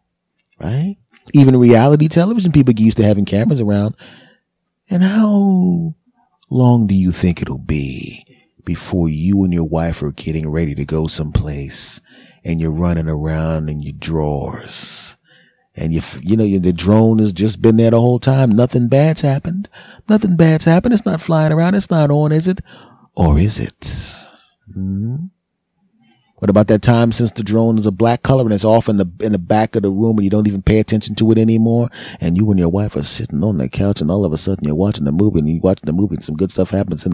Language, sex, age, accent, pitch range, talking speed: English, male, 30-49, American, 90-120 Hz, 210 wpm